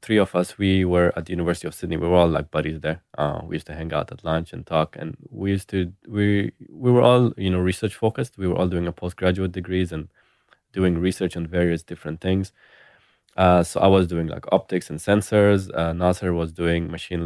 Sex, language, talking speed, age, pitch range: male, English, 230 wpm, 20-39, 85-100 Hz